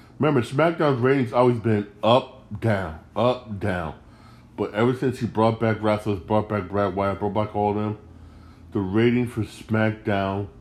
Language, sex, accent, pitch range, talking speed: English, male, American, 100-120 Hz, 165 wpm